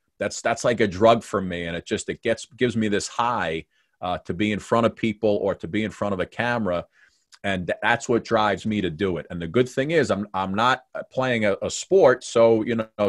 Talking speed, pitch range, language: 250 wpm, 95-120 Hz, English